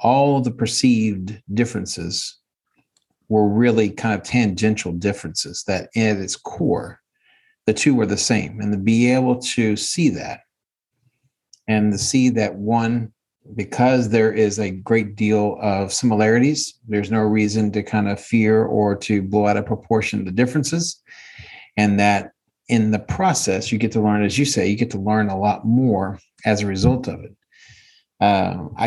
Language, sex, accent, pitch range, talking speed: English, male, American, 100-120 Hz, 165 wpm